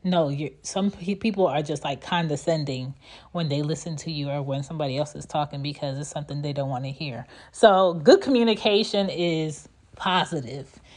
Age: 30-49